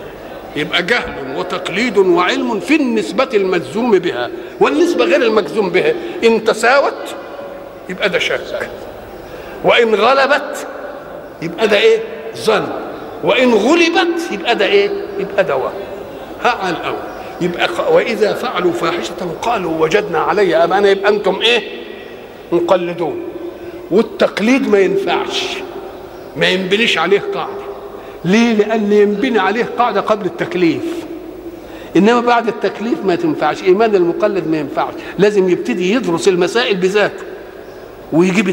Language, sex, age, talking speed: Arabic, male, 50-69, 115 wpm